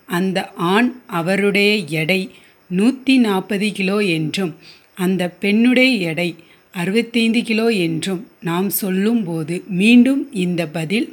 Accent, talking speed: native, 100 wpm